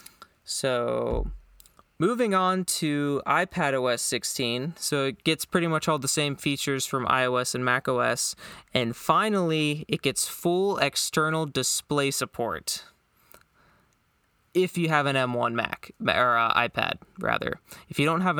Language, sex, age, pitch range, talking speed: English, male, 20-39, 125-155 Hz, 135 wpm